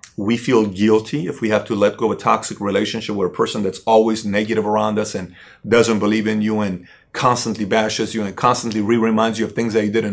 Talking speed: 235 wpm